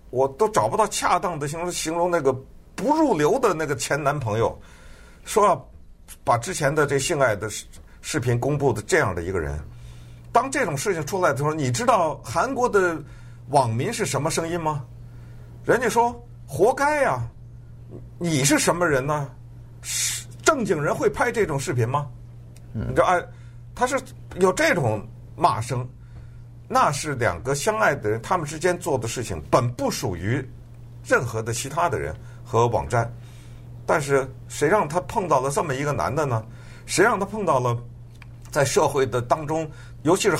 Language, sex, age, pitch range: Chinese, male, 50-69, 120-155 Hz